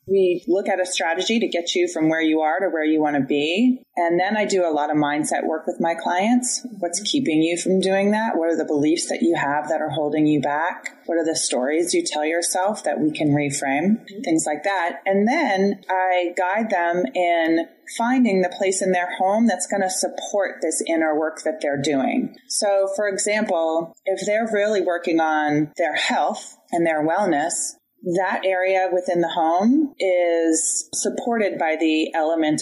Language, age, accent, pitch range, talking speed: English, 30-49, American, 155-205 Hz, 195 wpm